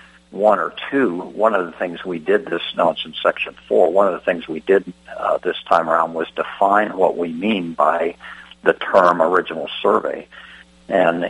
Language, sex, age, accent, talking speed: English, male, 60-79, American, 185 wpm